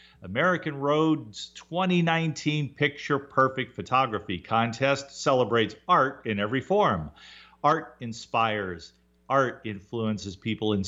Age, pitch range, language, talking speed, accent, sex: 50-69, 105-150 Hz, English, 100 wpm, American, male